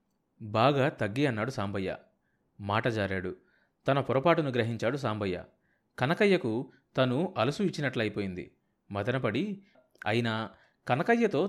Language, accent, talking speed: Telugu, native, 90 wpm